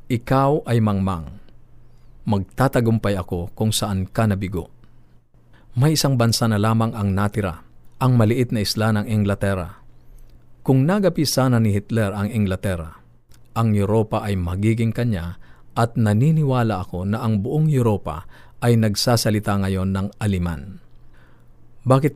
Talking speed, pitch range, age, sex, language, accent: 125 wpm, 105-125 Hz, 50-69, male, Filipino, native